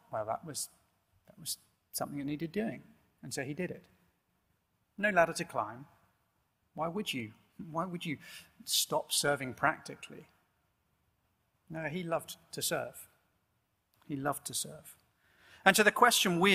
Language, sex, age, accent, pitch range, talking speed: English, male, 40-59, British, 115-185 Hz, 150 wpm